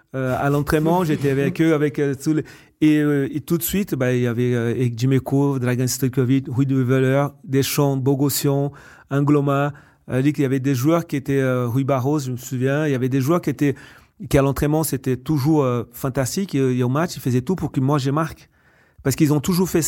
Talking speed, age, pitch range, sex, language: 230 wpm, 40-59, 130-150 Hz, male, French